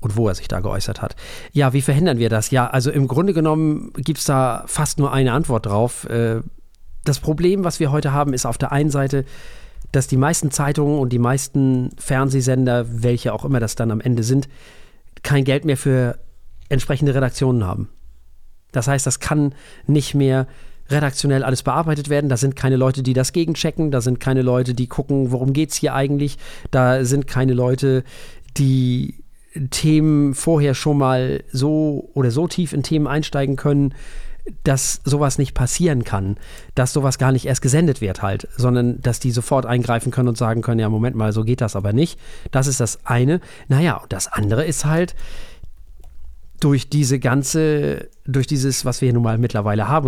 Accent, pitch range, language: German, 120-145 Hz, German